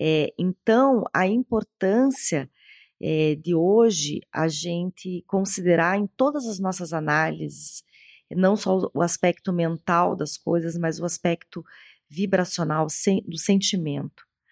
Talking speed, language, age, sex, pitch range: 110 wpm, Portuguese, 30-49, female, 155-195 Hz